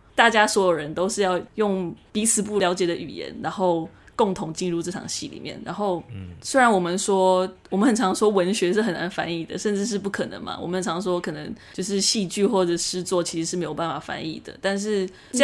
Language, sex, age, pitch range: Chinese, female, 20-39, 175-210 Hz